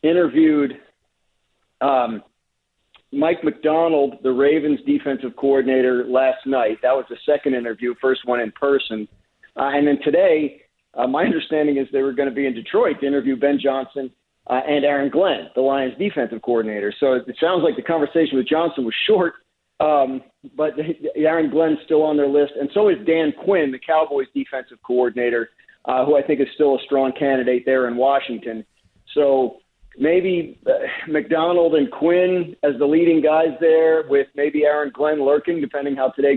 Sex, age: male, 40-59